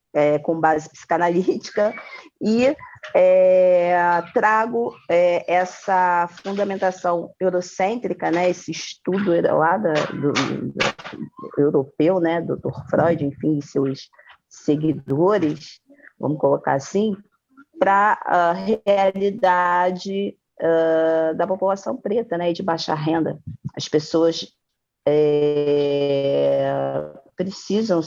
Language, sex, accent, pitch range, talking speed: Portuguese, female, Brazilian, 150-195 Hz, 75 wpm